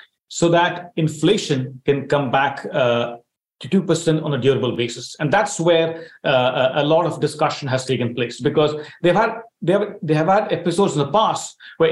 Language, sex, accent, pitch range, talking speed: English, male, Indian, 140-180 Hz, 190 wpm